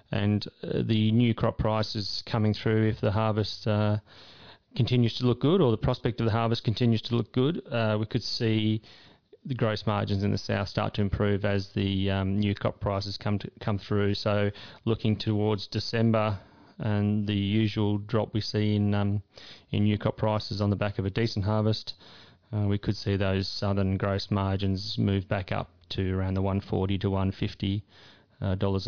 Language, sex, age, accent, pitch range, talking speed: English, male, 30-49, Australian, 100-110 Hz, 185 wpm